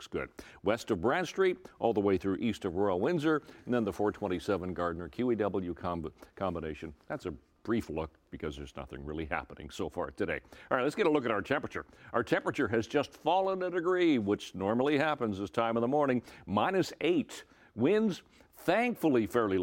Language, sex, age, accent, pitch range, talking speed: English, male, 60-79, American, 95-125 Hz, 185 wpm